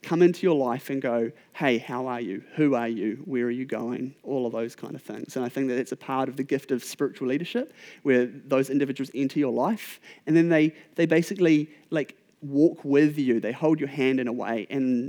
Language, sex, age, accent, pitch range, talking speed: English, male, 30-49, Australian, 125-155 Hz, 235 wpm